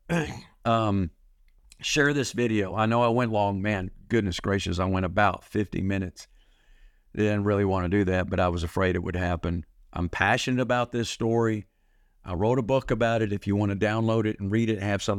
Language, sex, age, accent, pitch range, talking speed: English, male, 50-69, American, 95-115 Hz, 205 wpm